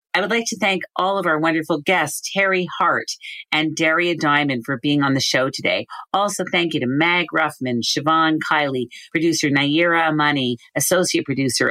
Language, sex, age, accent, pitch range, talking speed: English, female, 50-69, American, 120-160 Hz, 175 wpm